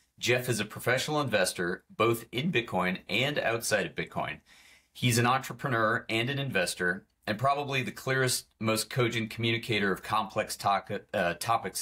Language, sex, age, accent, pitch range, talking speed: English, male, 40-59, American, 100-130 Hz, 145 wpm